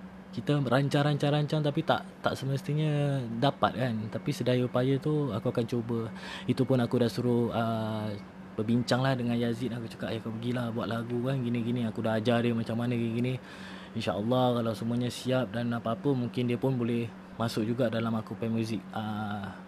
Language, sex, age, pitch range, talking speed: Malay, male, 20-39, 115-130 Hz, 180 wpm